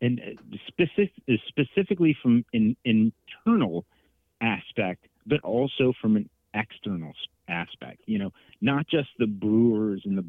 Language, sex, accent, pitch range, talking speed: English, male, American, 90-115 Hz, 115 wpm